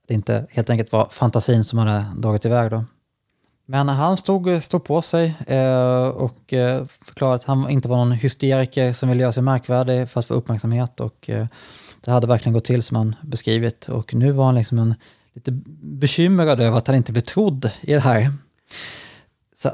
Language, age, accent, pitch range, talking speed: English, 20-39, Norwegian, 115-135 Hz, 190 wpm